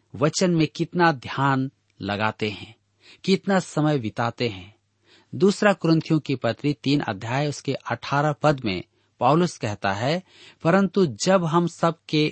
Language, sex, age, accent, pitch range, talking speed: Hindi, male, 50-69, native, 115-160 Hz, 130 wpm